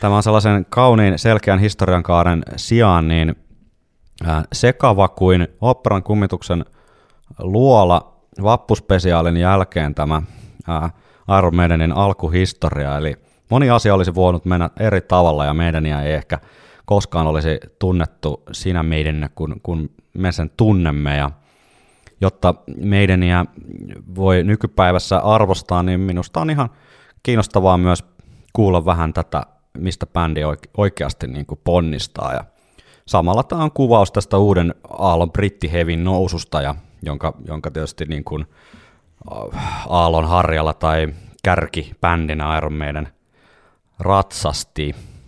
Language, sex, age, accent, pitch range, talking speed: Finnish, male, 30-49, native, 80-100 Hz, 115 wpm